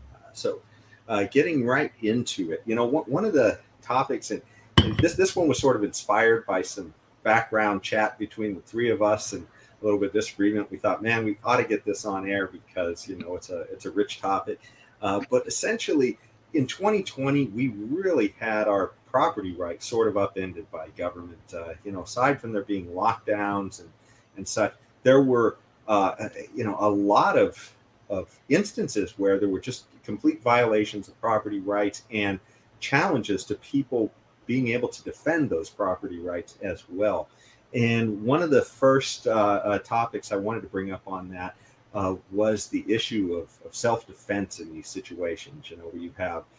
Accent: American